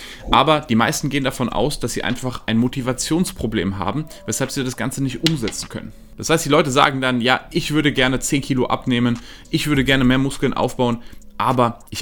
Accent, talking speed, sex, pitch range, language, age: German, 200 wpm, male, 110-130 Hz, German, 20-39